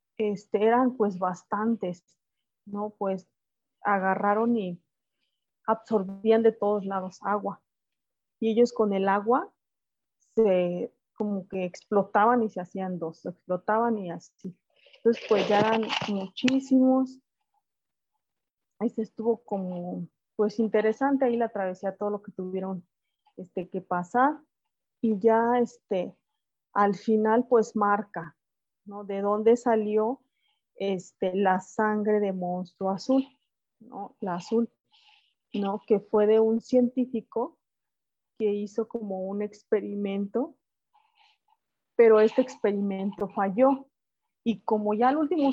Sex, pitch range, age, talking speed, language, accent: female, 195-235 Hz, 30-49, 120 wpm, Spanish, Colombian